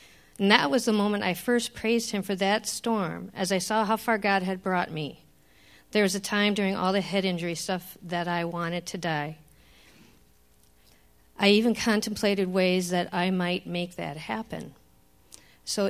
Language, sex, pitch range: English, female, 165-210 Hz